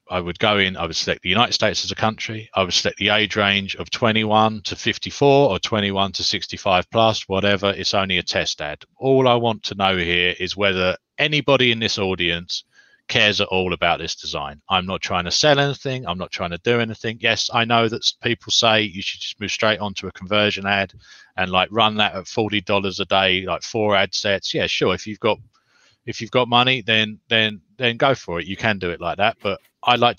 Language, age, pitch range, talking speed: English, 30-49, 95-115 Hz, 235 wpm